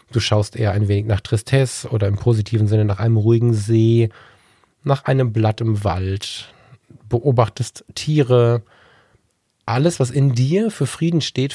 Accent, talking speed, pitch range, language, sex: German, 150 wpm, 110-130 Hz, German, male